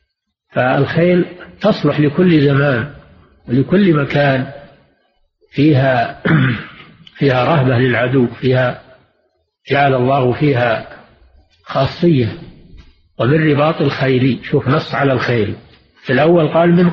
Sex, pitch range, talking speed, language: male, 130-180 Hz, 90 wpm, Arabic